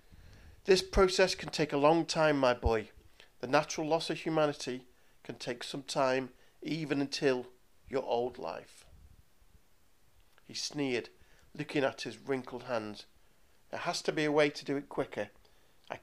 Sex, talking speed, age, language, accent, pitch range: male, 155 wpm, 40-59, English, British, 110-150 Hz